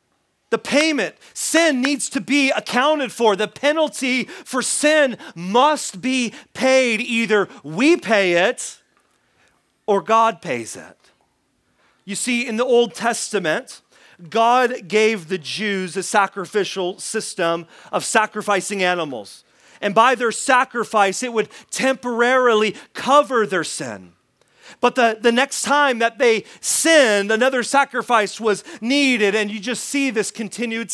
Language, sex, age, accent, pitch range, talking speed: English, male, 40-59, American, 200-265 Hz, 130 wpm